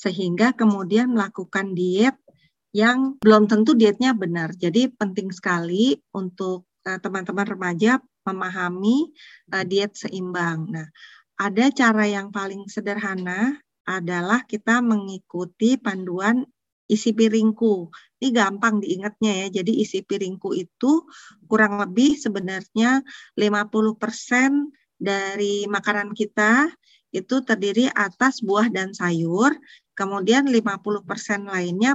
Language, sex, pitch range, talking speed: Indonesian, female, 190-235 Hz, 105 wpm